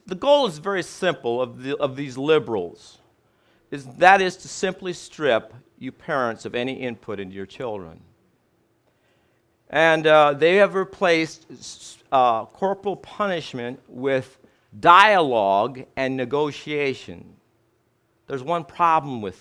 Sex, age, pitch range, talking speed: male, 50-69, 130-180 Hz, 125 wpm